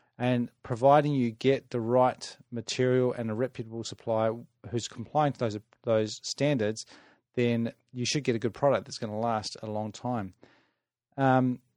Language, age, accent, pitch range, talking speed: English, 30-49, Australian, 115-140 Hz, 160 wpm